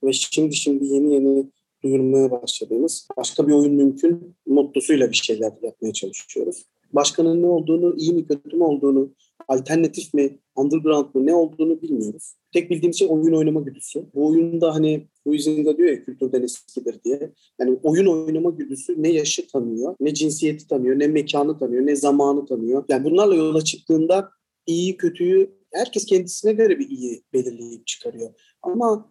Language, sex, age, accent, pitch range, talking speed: Turkish, male, 40-59, native, 140-210 Hz, 155 wpm